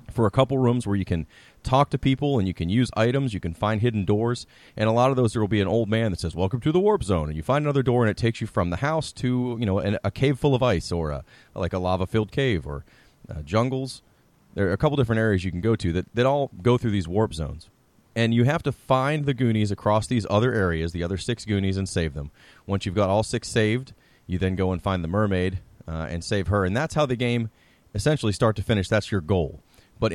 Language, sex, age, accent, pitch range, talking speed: English, male, 30-49, American, 95-125 Hz, 270 wpm